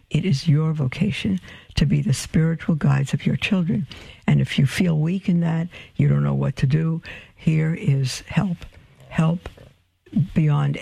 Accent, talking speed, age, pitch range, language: American, 165 wpm, 60-79, 125-165 Hz, English